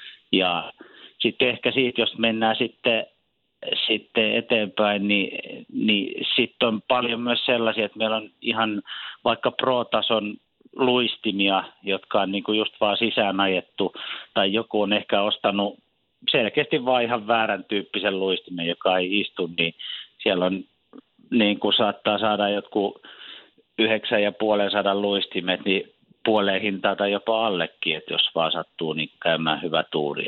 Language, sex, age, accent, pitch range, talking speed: Finnish, male, 50-69, native, 95-115 Hz, 145 wpm